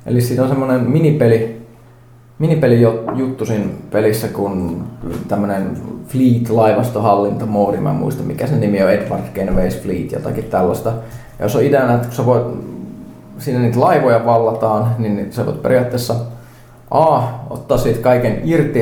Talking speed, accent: 135 wpm, native